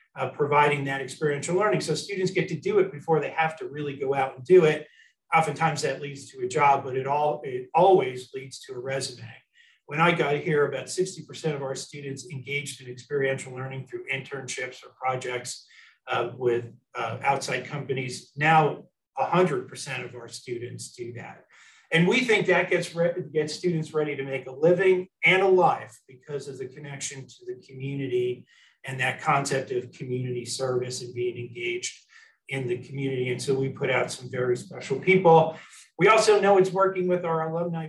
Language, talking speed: English, 180 wpm